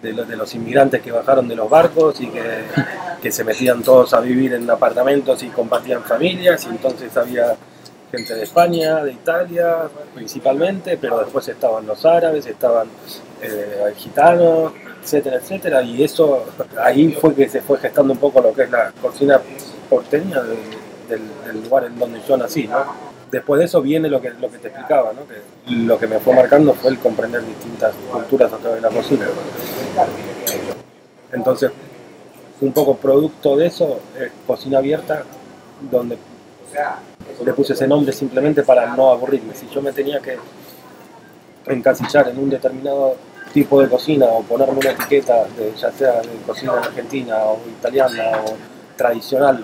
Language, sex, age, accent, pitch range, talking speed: Spanish, male, 20-39, Argentinian, 125-155 Hz, 165 wpm